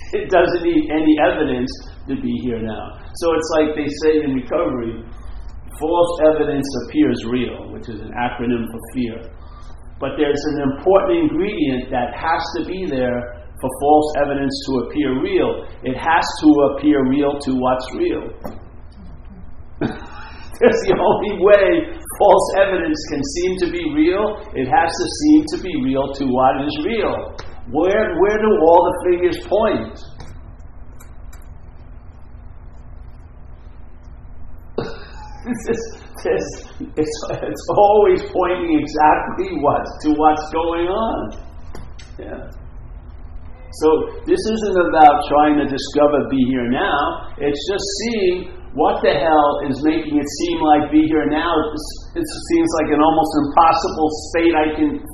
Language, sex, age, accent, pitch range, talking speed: English, male, 50-69, American, 125-190 Hz, 140 wpm